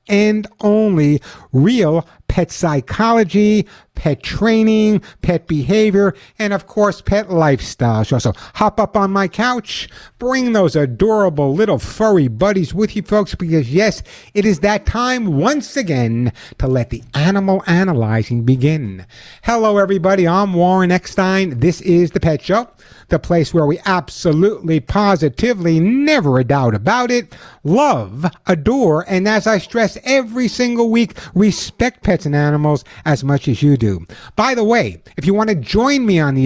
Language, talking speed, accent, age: English, 155 wpm, American, 60-79